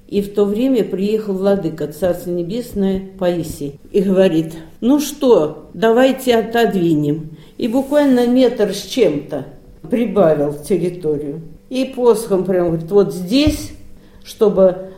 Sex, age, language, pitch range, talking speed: female, 50-69, Russian, 170-220 Hz, 120 wpm